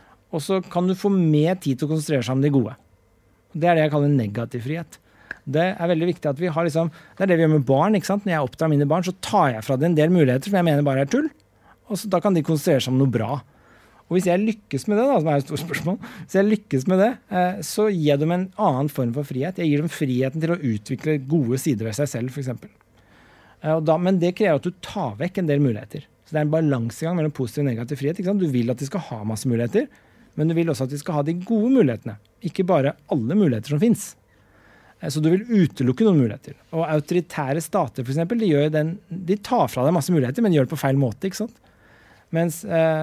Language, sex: English, male